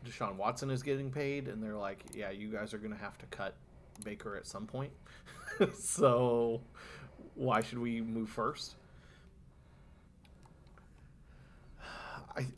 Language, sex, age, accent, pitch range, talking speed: English, male, 30-49, American, 95-115 Hz, 135 wpm